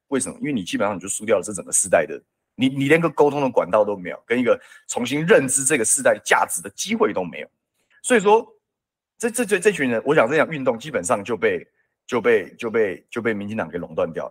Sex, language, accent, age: male, Chinese, native, 30-49